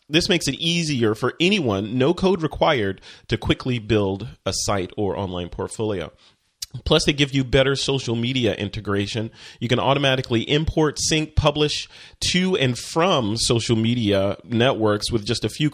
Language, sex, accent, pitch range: English, male, American, 115-155 Hz